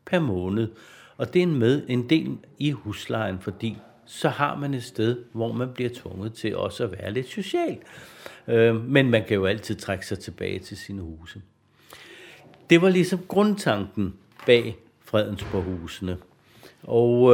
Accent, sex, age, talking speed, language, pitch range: native, male, 60-79, 155 wpm, Danish, 105-130 Hz